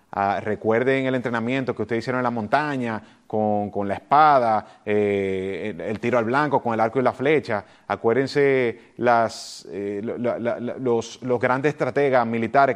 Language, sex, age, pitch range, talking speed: Spanish, male, 30-49, 105-130 Hz, 175 wpm